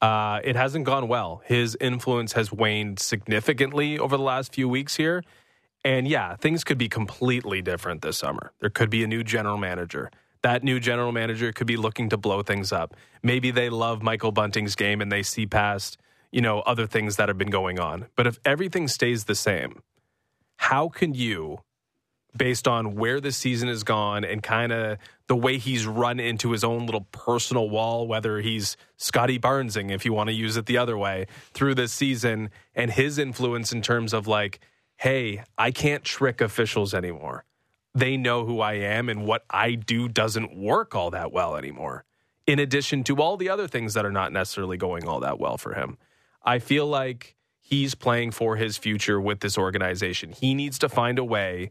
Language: English